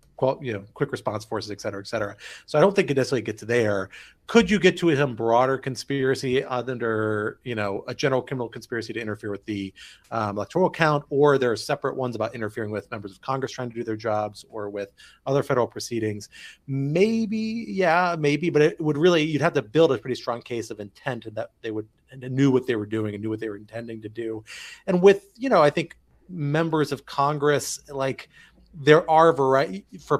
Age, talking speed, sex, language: 30-49, 215 wpm, male, English